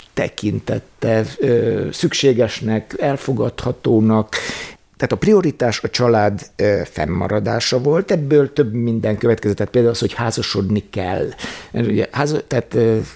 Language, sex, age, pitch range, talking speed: Hungarian, male, 60-79, 105-130 Hz, 85 wpm